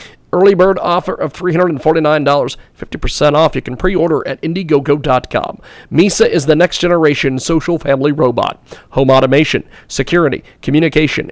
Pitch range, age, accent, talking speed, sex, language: 140-180 Hz, 40-59, American, 135 wpm, male, English